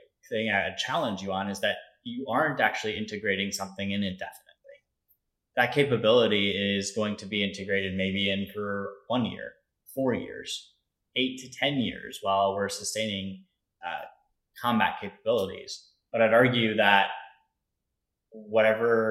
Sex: male